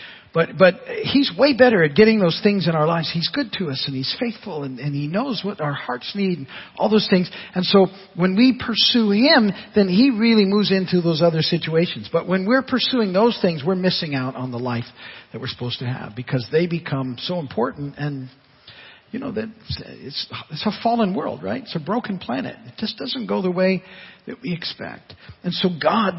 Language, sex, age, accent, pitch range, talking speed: English, male, 50-69, American, 135-195 Hz, 215 wpm